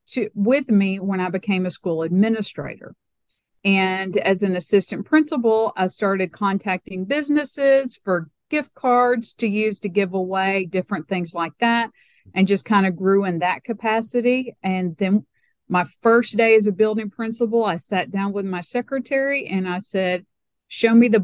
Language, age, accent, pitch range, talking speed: English, 50-69, American, 185-225 Hz, 165 wpm